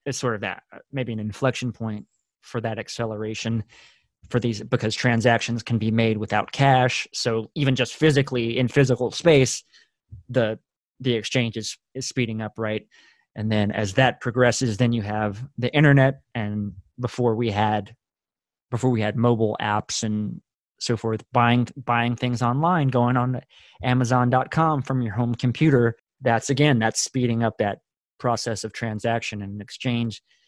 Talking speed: 155 wpm